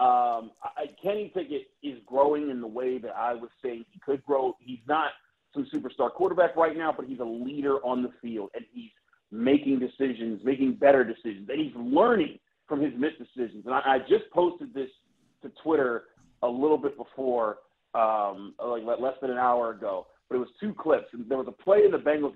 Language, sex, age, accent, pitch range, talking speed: English, male, 40-59, American, 120-150 Hz, 205 wpm